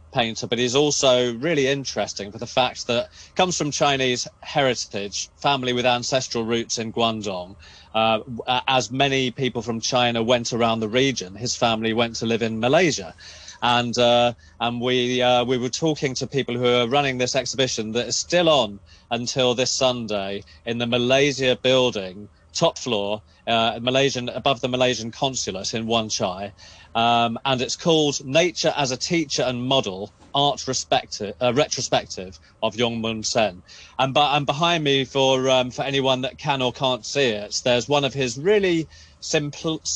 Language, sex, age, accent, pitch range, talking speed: English, male, 30-49, British, 110-135 Hz, 170 wpm